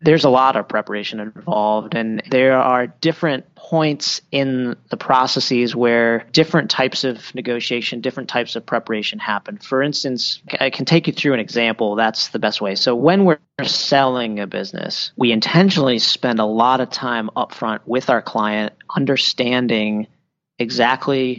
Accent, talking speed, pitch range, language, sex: American, 160 wpm, 120-140 Hz, English, male